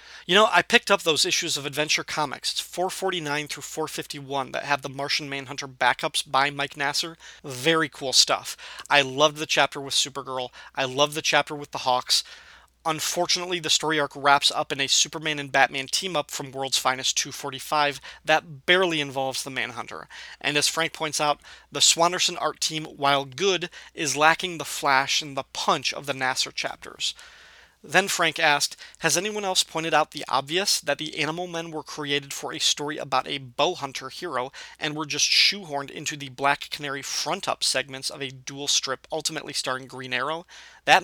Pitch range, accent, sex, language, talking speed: 140-160 Hz, American, male, English, 185 wpm